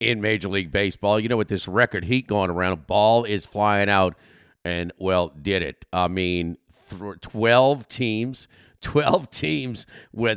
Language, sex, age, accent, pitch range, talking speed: English, male, 50-69, American, 90-125 Hz, 170 wpm